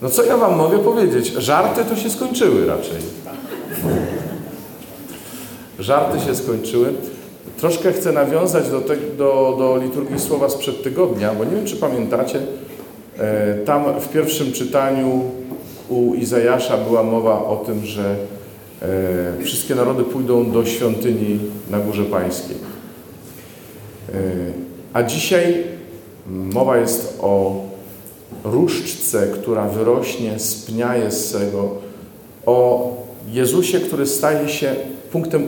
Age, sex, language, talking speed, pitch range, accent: 40-59, male, Polish, 110 wpm, 105-145 Hz, native